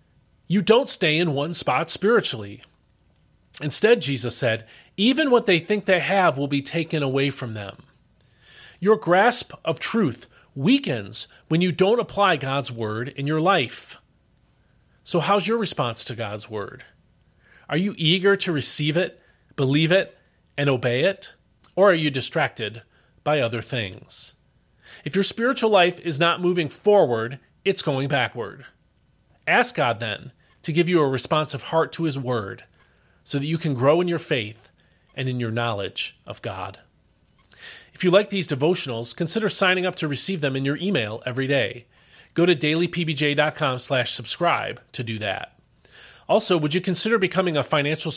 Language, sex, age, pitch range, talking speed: English, male, 30-49, 125-175 Hz, 160 wpm